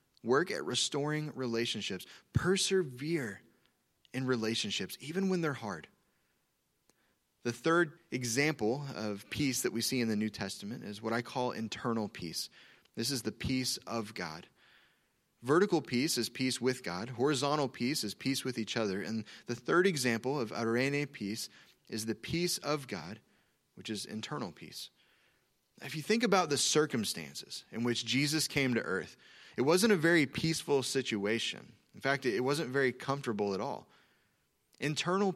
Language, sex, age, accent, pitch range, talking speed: English, male, 30-49, American, 115-155 Hz, 155 wpm